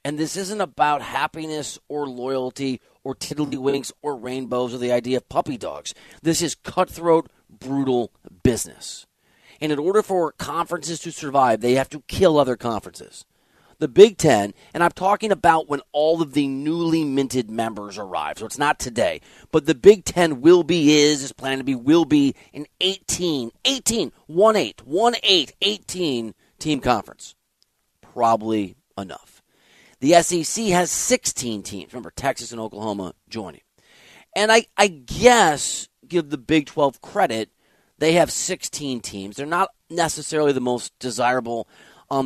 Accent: American